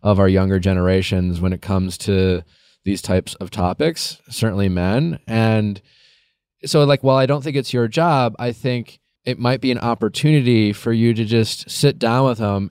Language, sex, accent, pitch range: English, male, American, 100-130 Hz